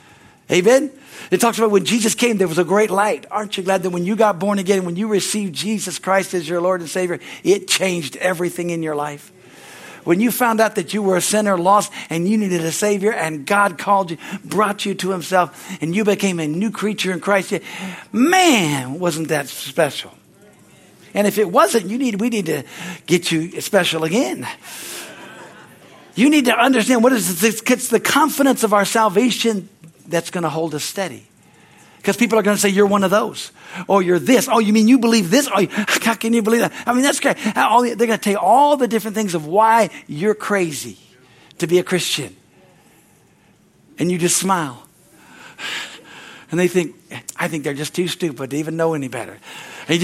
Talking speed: 200 wpm